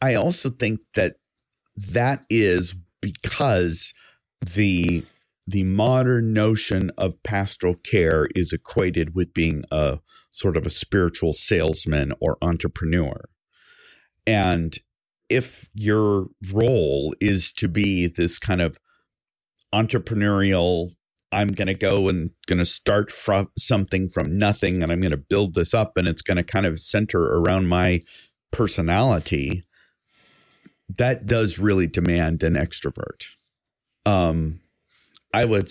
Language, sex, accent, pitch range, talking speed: English, male, American, 85-100 Hz, 125 wpm